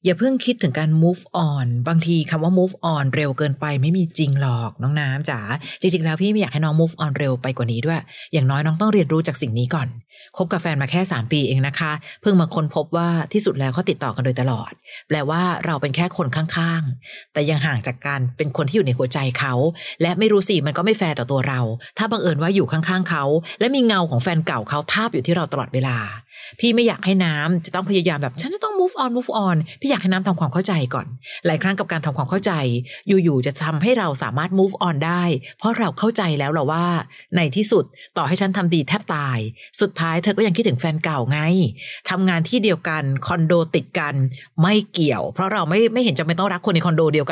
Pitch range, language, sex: 145-185 Hz, Thai, female